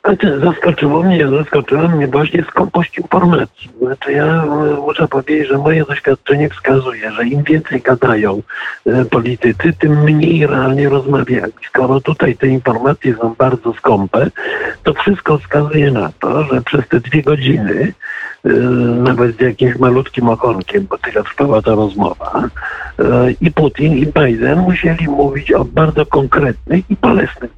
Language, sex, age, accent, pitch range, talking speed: Polish, male, 60-79, native, 130-155 Hz, 135 wpm